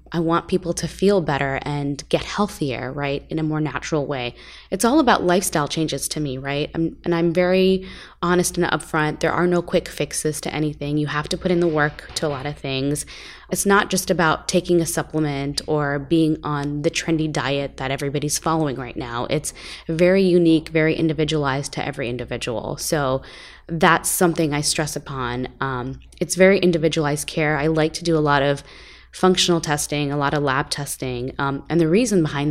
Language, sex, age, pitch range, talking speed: English, female, 20-39, 145-175 Hz, 190 wpm